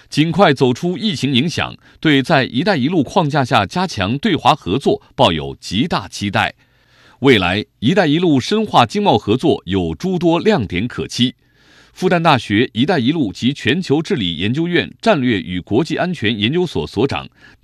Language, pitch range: Chinese, 120-185 Hz